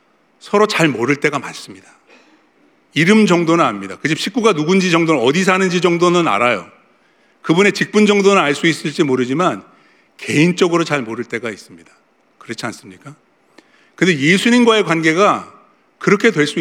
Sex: male